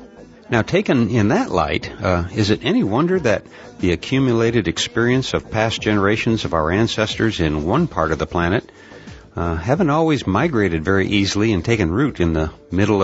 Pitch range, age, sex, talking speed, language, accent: 85-115 Hz, 60-79, male, 175 wpm, English, American